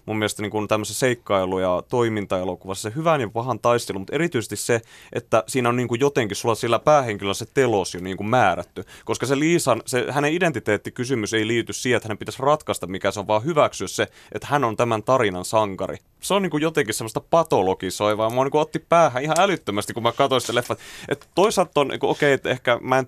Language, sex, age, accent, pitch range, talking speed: Finnish, male, 30-49, native, 105-135 Hz, 205 wpm